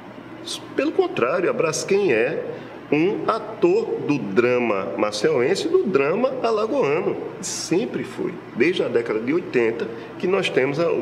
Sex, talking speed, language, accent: male, 135 wpm, Portuguese, Brazilian